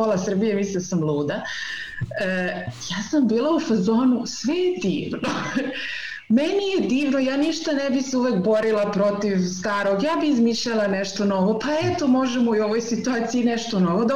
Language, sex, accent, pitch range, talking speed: Croatian, female, native, 210-280 Hz, 155 wpm